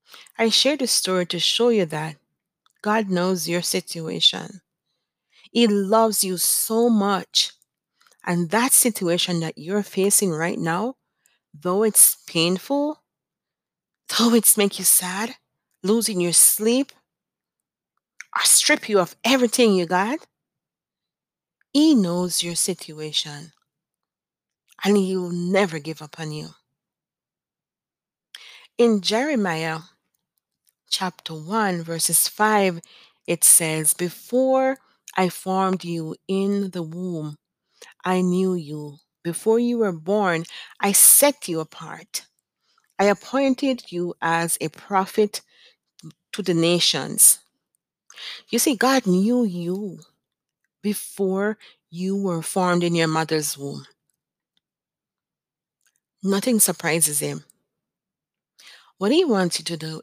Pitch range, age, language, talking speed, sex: 170-220 Hz, 40-59, English, 110 wpm, female